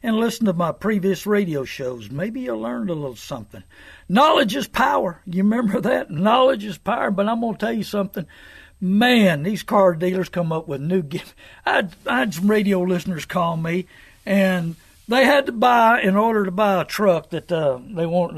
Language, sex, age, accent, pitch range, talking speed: English, male, 60-79, American, 175-225 Hz, 195 wpm